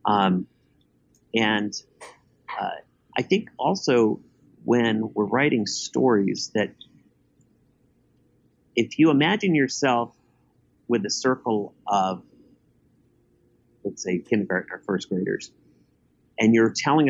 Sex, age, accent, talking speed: male, 40-59, American, 100 wpm